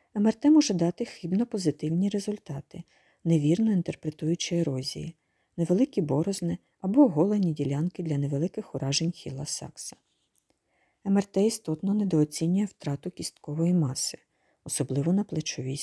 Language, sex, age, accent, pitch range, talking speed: Ukrainian, female, 40-59, native, 150-185 Hz, 100 wpm